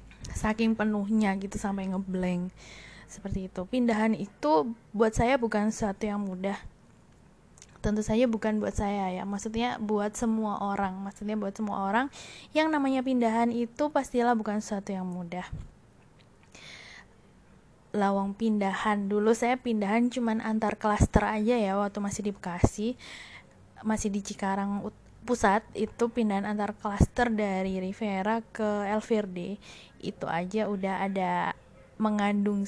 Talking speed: 130 wpm